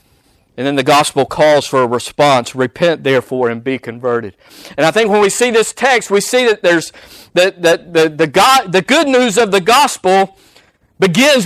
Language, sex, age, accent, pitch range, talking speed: English, male, 50-69, American, 195-255 Hz, 190 wpm